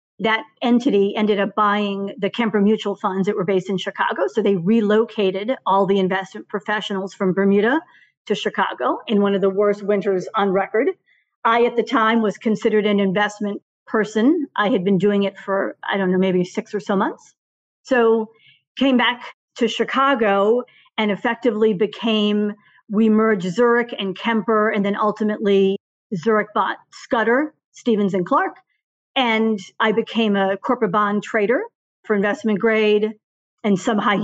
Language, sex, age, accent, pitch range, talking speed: English, female, 40-59, American, 200-230 Hz, 160 wpm